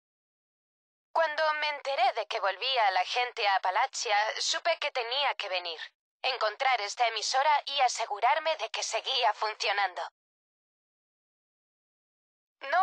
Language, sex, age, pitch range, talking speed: English, female, 20-39, 210-285 Hz, 115 wpm